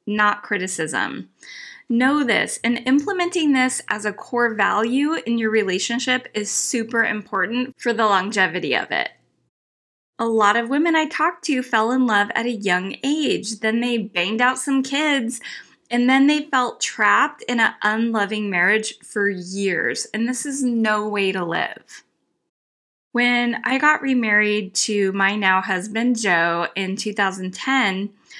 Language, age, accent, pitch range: English, 20-39, American, 200-255 Hz